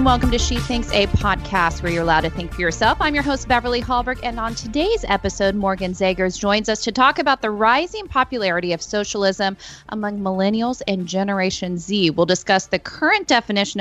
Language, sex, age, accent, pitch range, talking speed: English, female, 30-49, American, 185-245 Hz, 190 wpm